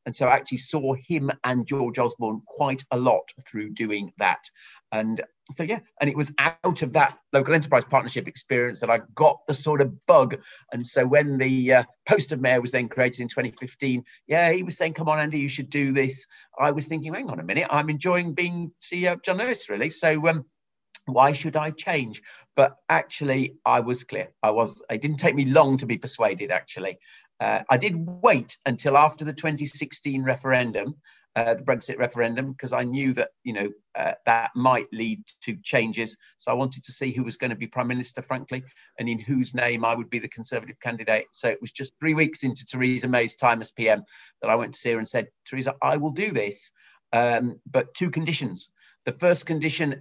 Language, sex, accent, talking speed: English, male, British, 210 wpm